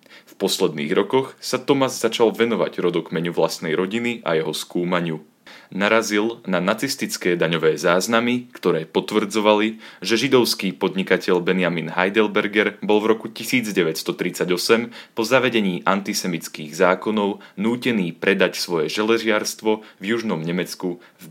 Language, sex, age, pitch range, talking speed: Slovak, male, 30-49, 90-115 Hz, 115 wpm